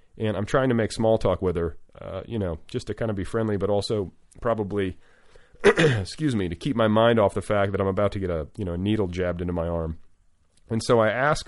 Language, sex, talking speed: English, male, 250 wpm